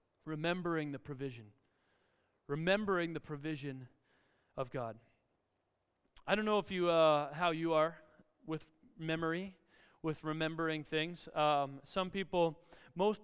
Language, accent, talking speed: Russian, American, 120 wpm